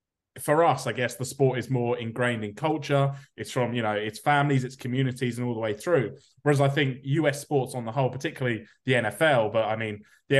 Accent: British